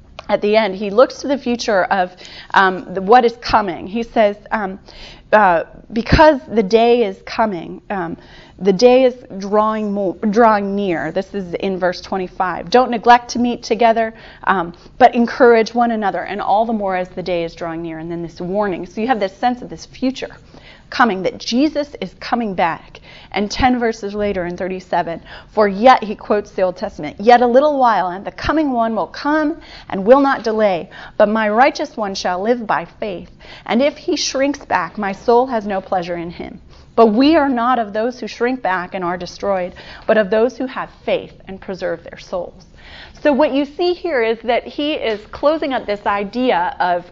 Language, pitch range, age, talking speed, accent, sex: English, 190-250 Hz, 30-49, 200 wpm, American, female